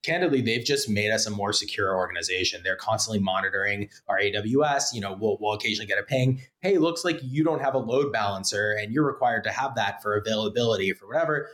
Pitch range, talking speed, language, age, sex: 110-155 Hz, 215 wpm, English, 20-39, male